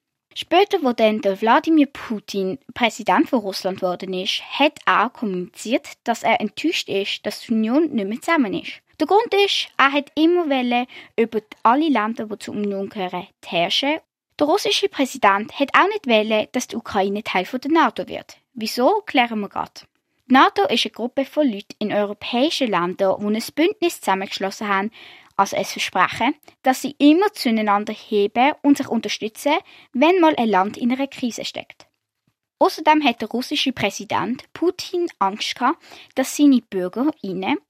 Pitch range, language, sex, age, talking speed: 205-300 Hz, German, female, 20-39, 160 wpm